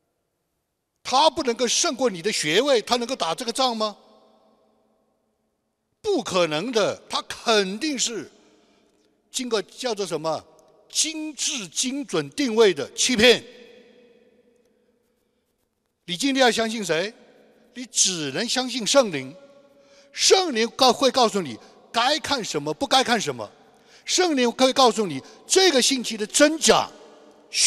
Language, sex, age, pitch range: Chinese, male, 60-79, 175-270 Hz